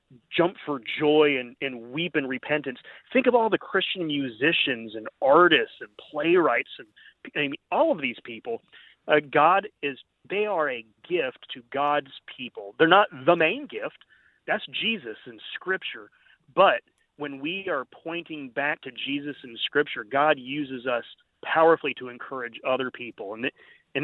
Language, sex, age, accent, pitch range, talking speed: English, male, 30-49, American, 130-165 Hz, 160 wpm